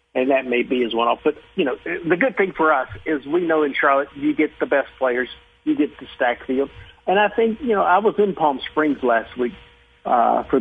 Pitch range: 135-170 Hz